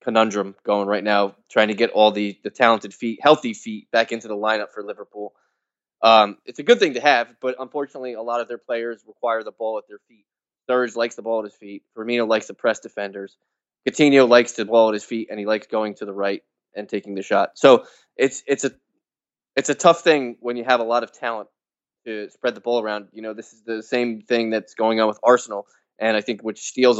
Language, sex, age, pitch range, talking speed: English, male, 20-39, 105-120 Hz, 240 wpm